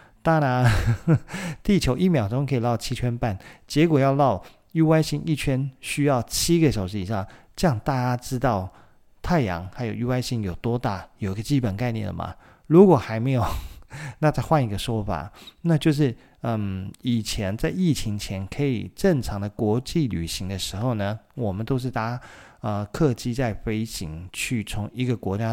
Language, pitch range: Chinese, 100-135 Hz